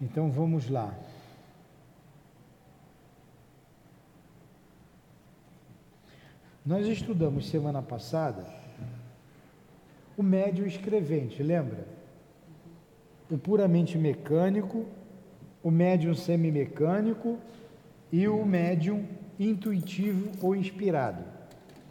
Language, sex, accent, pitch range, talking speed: Portuguese, male, Brazilian, 155-195 Hz, 65 wpm